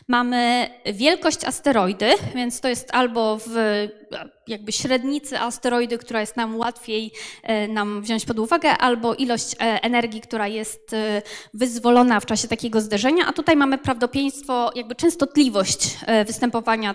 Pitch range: 225-300 Hz